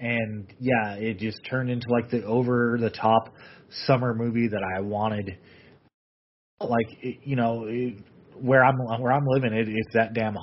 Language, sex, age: English, male, 30-49